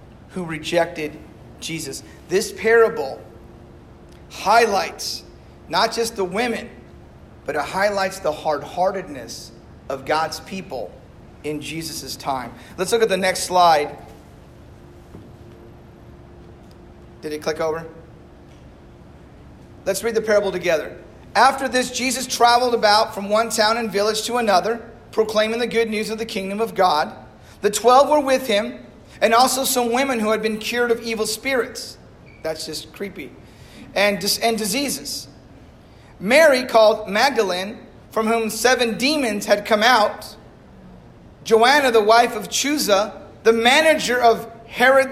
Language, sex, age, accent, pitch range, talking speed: English, male, 40-59, American, 175-240 Hz, 130 wpm